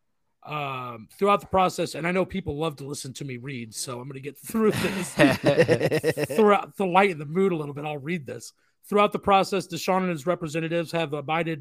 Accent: American